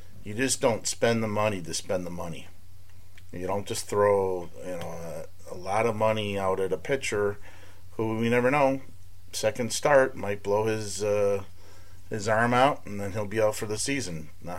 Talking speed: 195 wpm